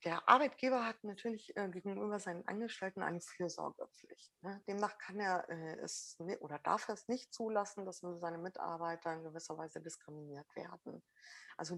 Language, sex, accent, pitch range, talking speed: German, female, German, 165-195 Hz, 145 wpm